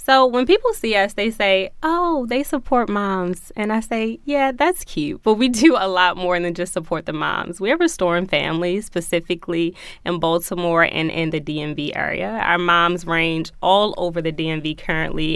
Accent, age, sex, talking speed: American, 20-39, female, 190 wpm